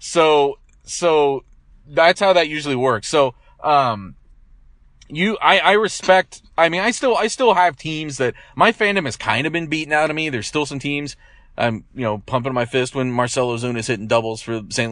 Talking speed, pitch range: 200 wpm, 115-155 Hz